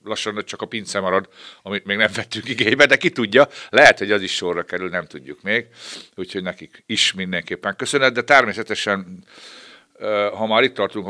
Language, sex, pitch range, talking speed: Hungarian, male, 85-105 Hz, 180 wpm